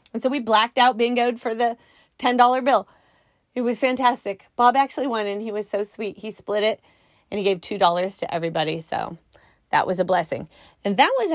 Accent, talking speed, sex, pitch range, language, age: American, 200 wpm, female, 175-245 Hz, English, 30-49